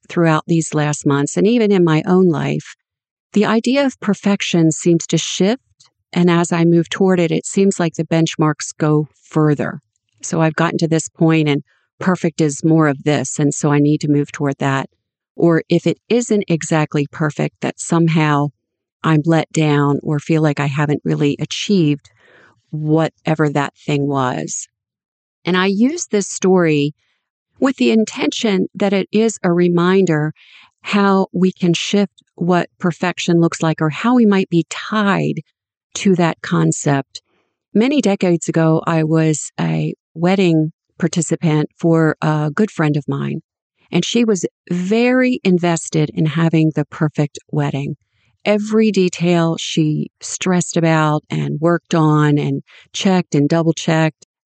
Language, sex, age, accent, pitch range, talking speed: English, female, 50-69, American, 150-185 Hz, 150 wpm